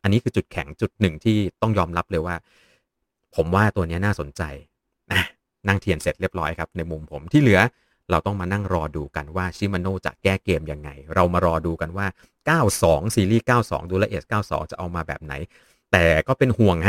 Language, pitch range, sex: Thai, 90-115 Hz, male